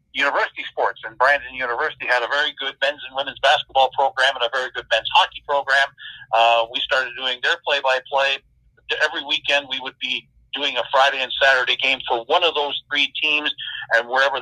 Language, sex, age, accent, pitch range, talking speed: English, male, 50-69, American, 125-150 Hz, 200 wpm